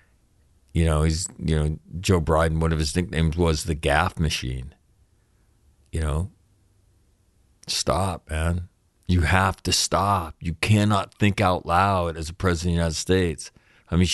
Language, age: English, 50-69